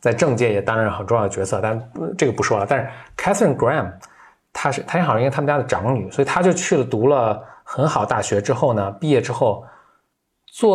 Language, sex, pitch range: Chinese, male, 100-130 Hz